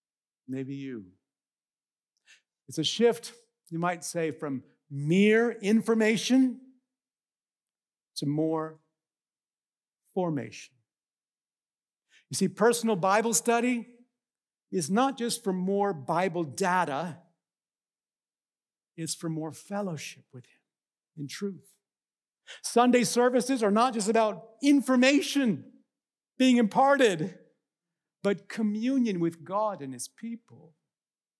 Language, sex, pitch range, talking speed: English, male, 150-240 Hz, 95 wpm